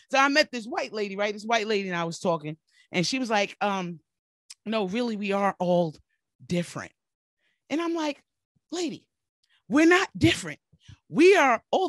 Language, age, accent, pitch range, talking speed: English, 30-49, American, 195-285 Hz, 175 wpm